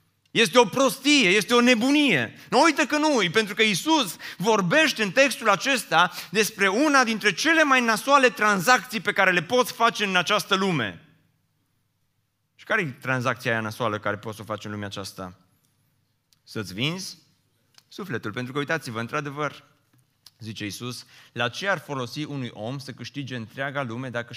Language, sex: Romanian, male